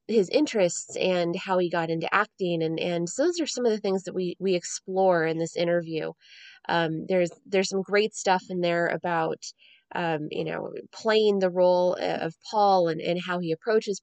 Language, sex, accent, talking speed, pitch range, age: English, female, American, 195 wpm, 170-220 Hz, 20-39